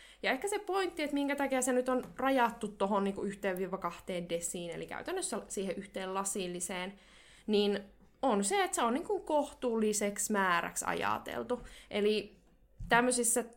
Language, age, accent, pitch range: Finnish, 20-39, native, 195-270 Hz